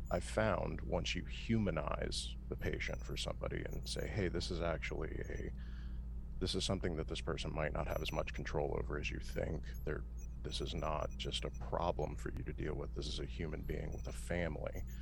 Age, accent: 40-59, American